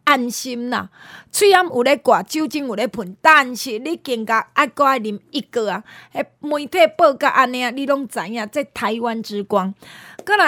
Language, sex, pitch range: Chinese, female, 220-295 Hz